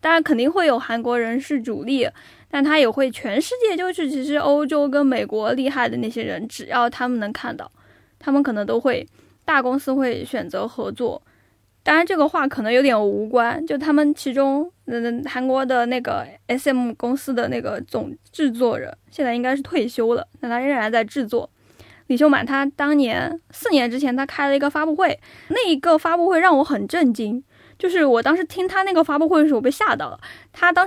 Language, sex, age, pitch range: Chinese, female, 10-29, 245-320 Hz